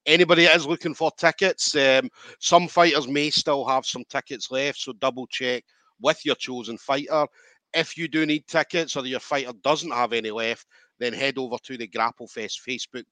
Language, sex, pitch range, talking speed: English, male, 115-150 Hz, 190 wpm